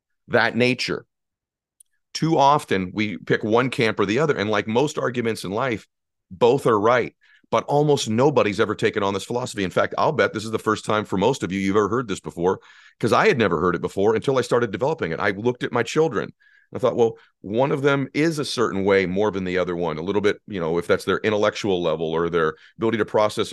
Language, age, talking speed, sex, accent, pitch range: English, 40-59, 235 wpm, male, American, 95-125 Hz